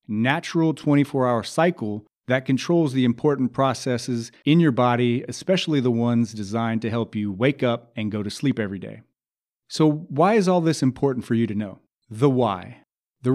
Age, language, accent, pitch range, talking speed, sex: 30-49, English, American, 115-150 Hz, 175 wpm, male